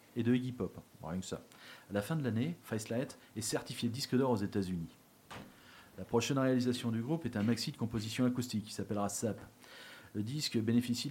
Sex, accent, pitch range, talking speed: male, French, 105-130 Hz, 200 wpm